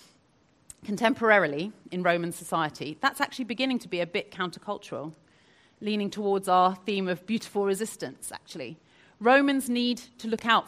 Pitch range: 170-240 Hz